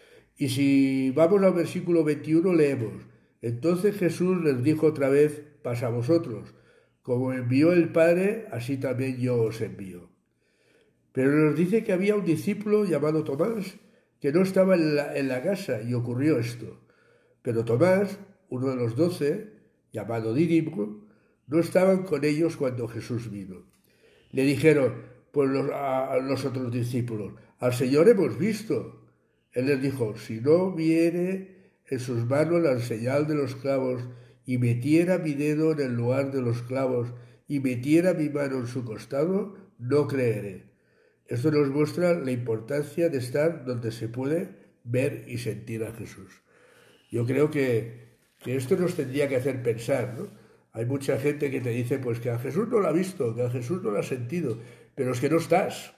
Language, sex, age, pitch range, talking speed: Spanish, male, 60-79, 120-165 Hz, 165 wpm